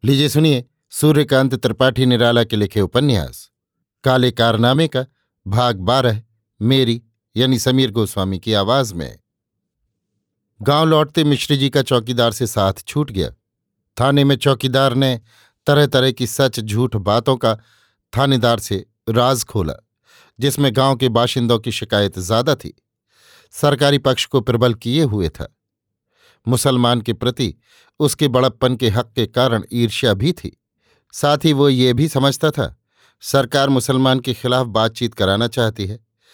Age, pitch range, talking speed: 50-69, 115-140 Hz, 145 wpm